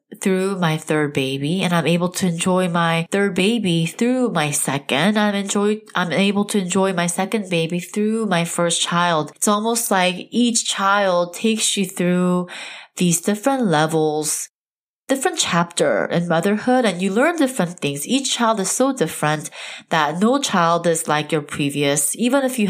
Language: English